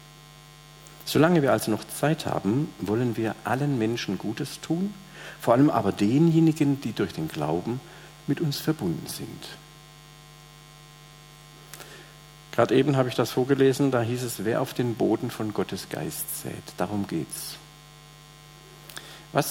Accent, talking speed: German, 135 wpm